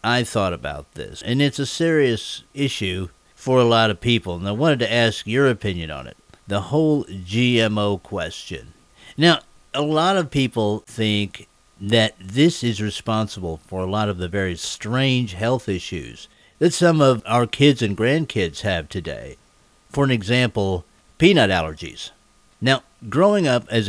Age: 50-69